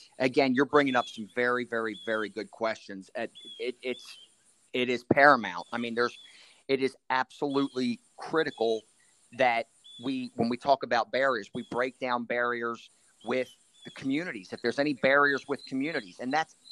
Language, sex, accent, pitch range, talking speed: English, male, American, 115-140 Hz, 160 wpm